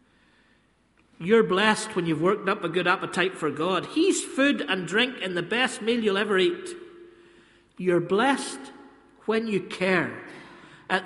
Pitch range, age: 190-280 Hz, 50-69